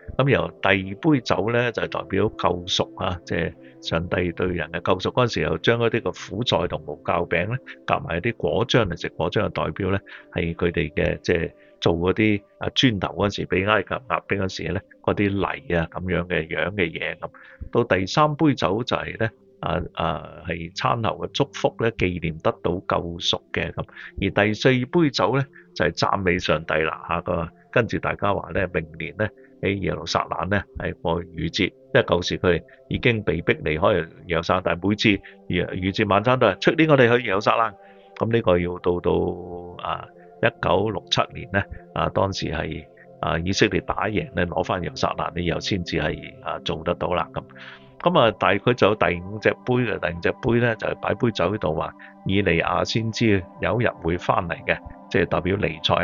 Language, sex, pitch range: Chinese, male, 85-115 Hz